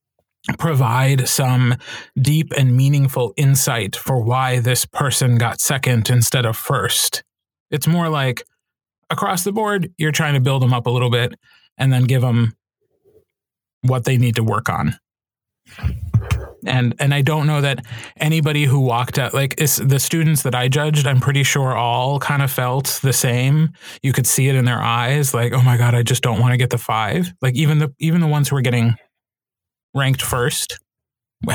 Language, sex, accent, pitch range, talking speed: English, male, American, 125-155 Hz, 185 wpm